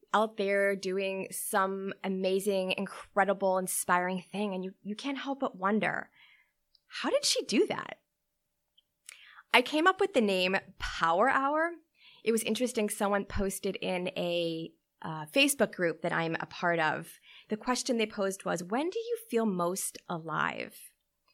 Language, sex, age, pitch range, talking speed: English, female, 20-39, 185-245 Hz, 150 wpm